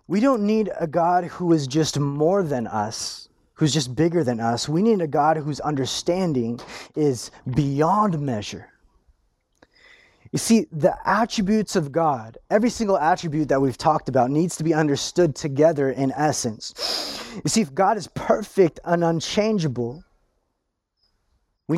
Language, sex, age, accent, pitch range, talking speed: English, male, 20-39, American, 140-185 Hz, 150 wpm